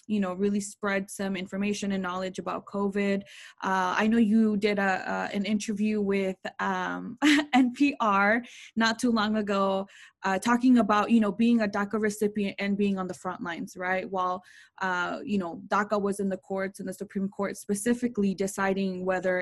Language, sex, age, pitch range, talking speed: English, female, 20-39, 190-215 Hz, 180 wpm